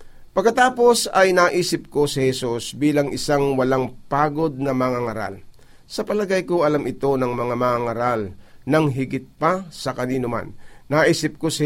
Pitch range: 130-155 Hz